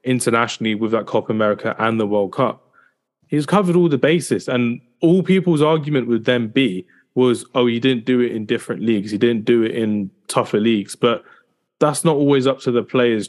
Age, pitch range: 20-39, 110-130 Hz